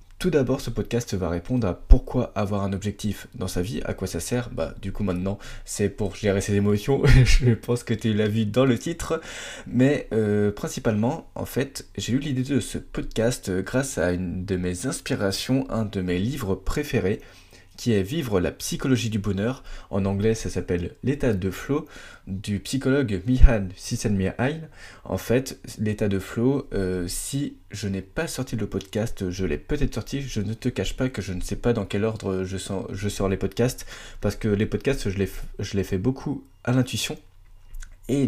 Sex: male